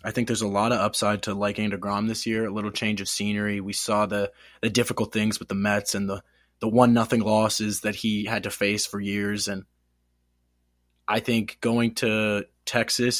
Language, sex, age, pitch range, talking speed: English, male, 20-39, 85-115 Hz, 200 wpm